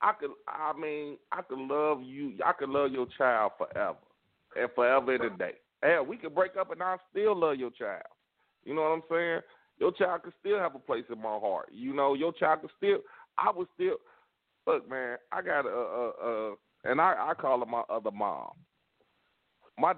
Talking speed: 210 wpm